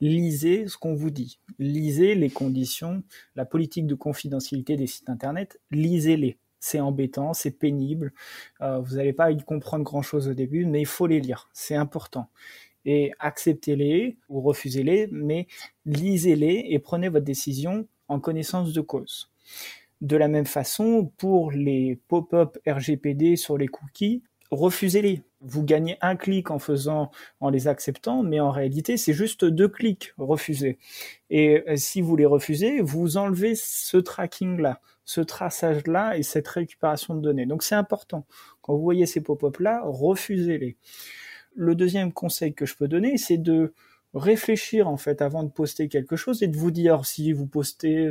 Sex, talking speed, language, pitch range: male, 160 wpm, French, 145-175 Hz